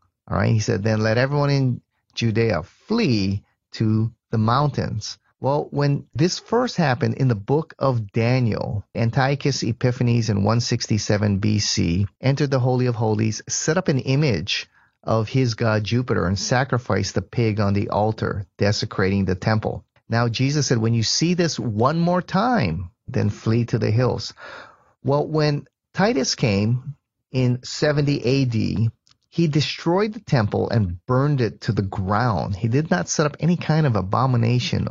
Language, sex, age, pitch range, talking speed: English, male, 30-49, 105-135 Hz, 160 wpm